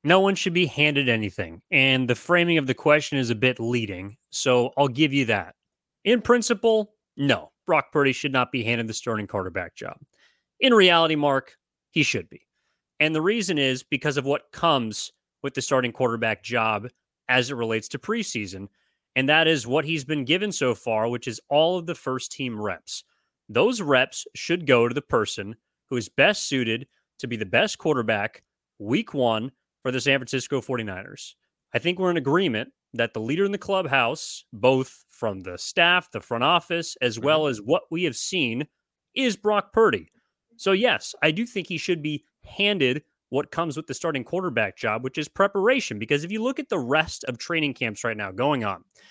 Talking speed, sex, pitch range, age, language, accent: 195 wpm, male, 125-175 Hz, 30-49, English, American